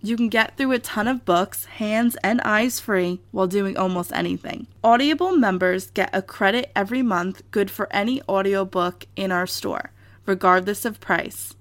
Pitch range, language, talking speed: 180-225 Hz, English, 170 wpm